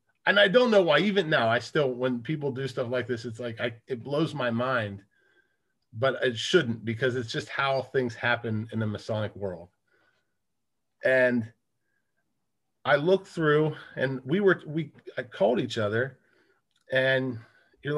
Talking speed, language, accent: 155 wpm, English, American